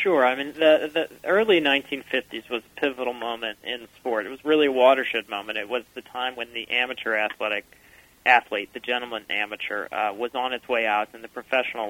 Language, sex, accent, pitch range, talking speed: English, male, American, 110-130 Hz, 200 wpm